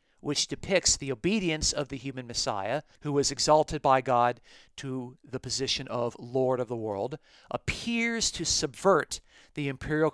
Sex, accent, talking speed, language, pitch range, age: male, American, 155 wpm, English, 125-155 Hz, 40-59